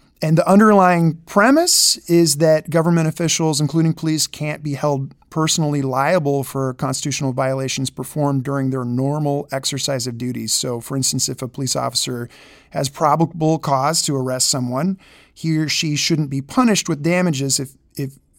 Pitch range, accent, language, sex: 130-160 Hz, American, English, male